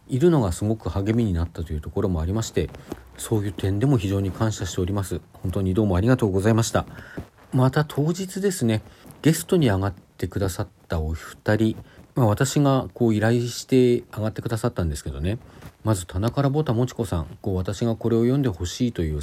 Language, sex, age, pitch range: Japanese, male, 40-59, 85-120 Hz